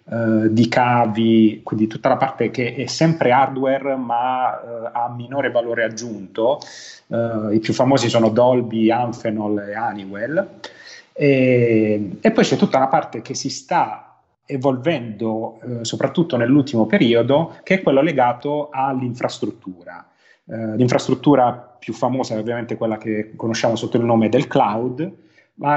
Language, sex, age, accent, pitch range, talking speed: Italian, male, 30-49, native, 110-130 Hz, 140 wpm